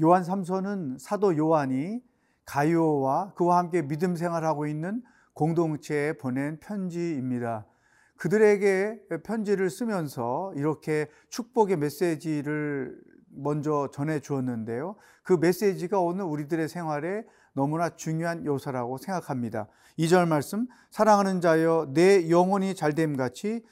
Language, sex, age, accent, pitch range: Korean, male, 40-59, native, 140-190 Hz